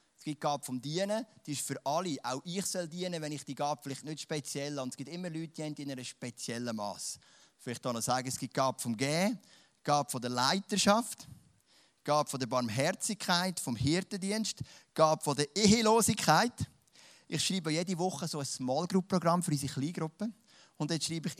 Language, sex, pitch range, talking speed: German, male, 135-175 Hz, 185 wpm